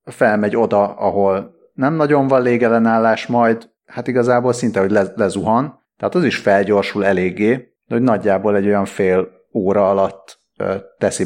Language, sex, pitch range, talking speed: Hungarian, male, 95-120 Hz, 140 wpm